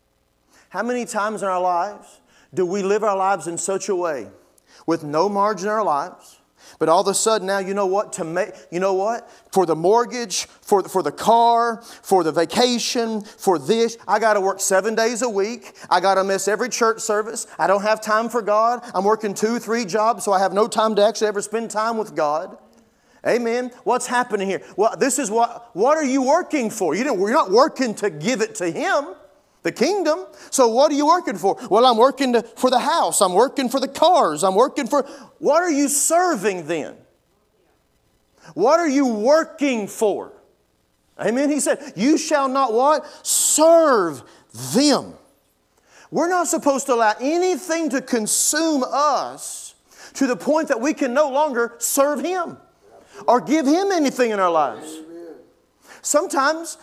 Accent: American